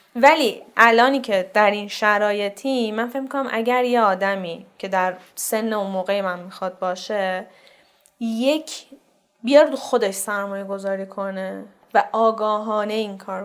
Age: 10-29